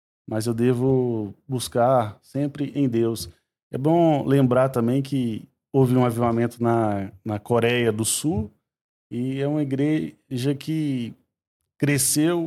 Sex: male